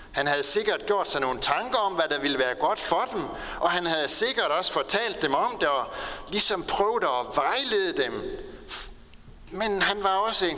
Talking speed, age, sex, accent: 200 wpm, 60-79, male, native